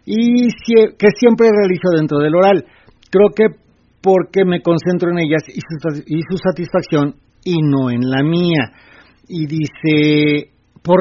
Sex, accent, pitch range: male, Mexican, 150-200 Hz